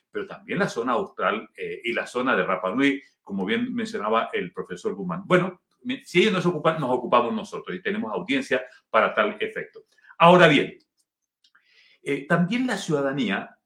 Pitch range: 155-220 Hz